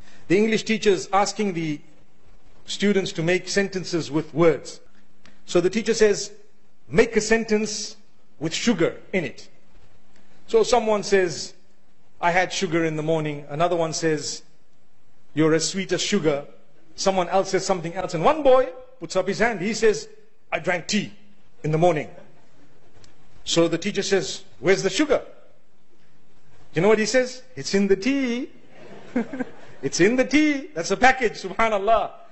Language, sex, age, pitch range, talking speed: English, male, 50-69, 175-255 Hz, 155 wpm